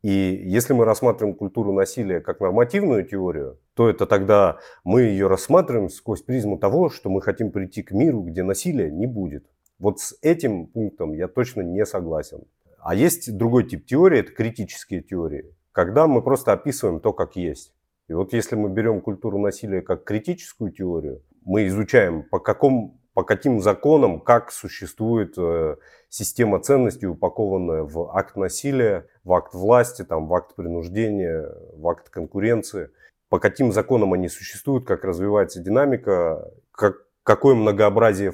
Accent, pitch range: native, 95-125 Hz